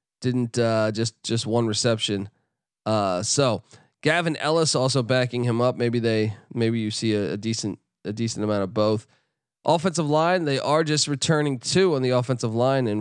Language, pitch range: English, 110-135 Hz